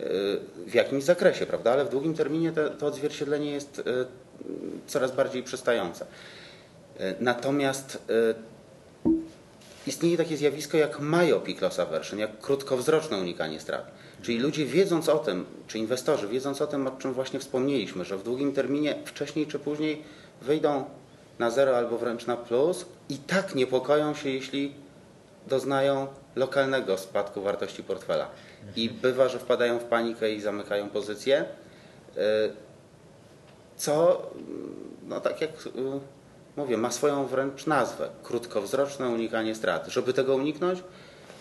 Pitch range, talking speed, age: 115-150 Hz, 135 wpm, 30-49